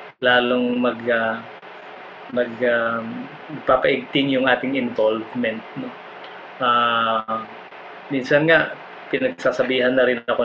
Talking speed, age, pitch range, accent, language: 100 wpm, 20-39, 115-135 Hz, Filipino, English